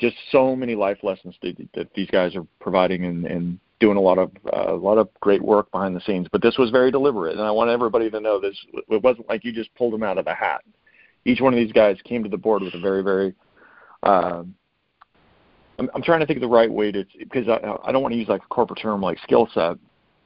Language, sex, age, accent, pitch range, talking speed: English, male, 40-59, American, 100-120 Hz, 260 wpm